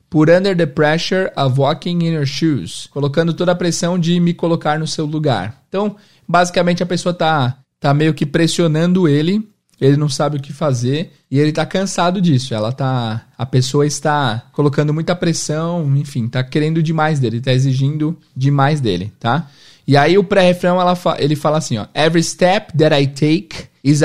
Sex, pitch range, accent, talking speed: male, 130-165 Hz, Brazilian, 180 wpm